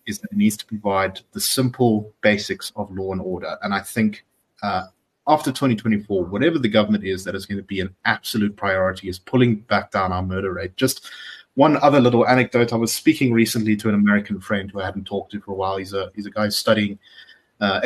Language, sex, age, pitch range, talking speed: English, male, 30-49, 95-120 Hz, 220 wpm